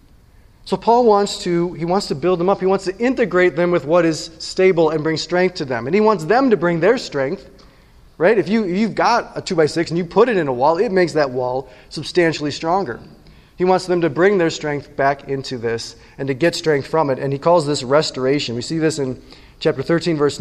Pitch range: 140-190 Hz